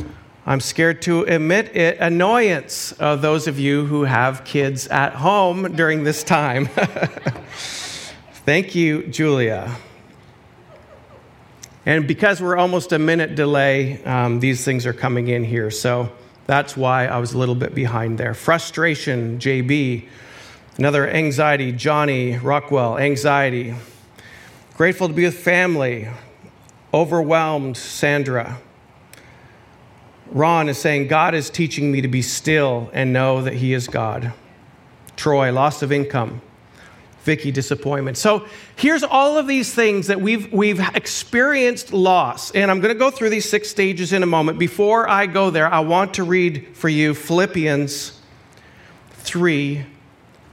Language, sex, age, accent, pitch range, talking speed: English, male, 40-59, American, 130-170 Hz, 140 wpm